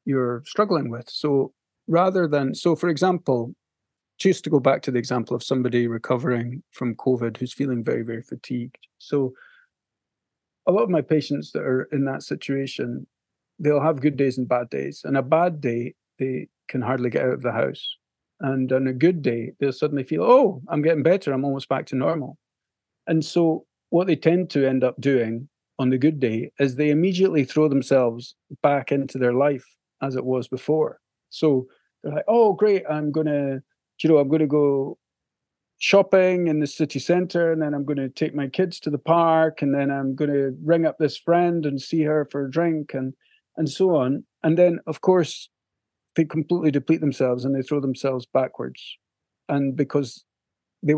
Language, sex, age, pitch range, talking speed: English, male, 40-59, 130-160 Hz, 195 wpm